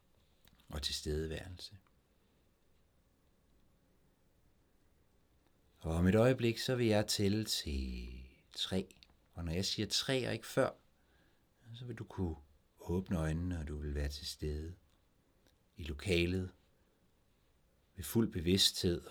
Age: 60-79